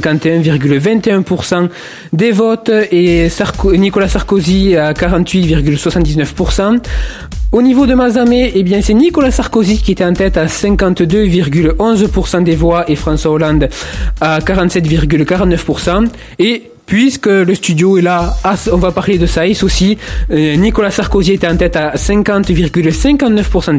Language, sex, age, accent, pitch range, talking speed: French, male, 20-39, French, 170-215 Hz, 115 wpm